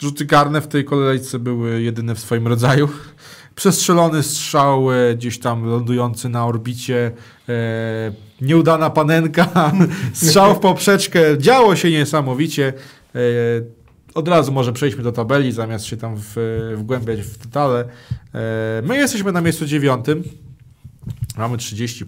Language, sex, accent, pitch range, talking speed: Polish, male, native, 115-145 Hz, 120 wpm